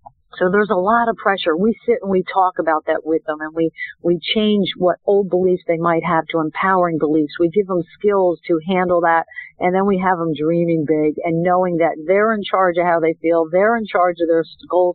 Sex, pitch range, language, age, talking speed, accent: female, 165-200 Hz, English, 50-69, 235 wpm, American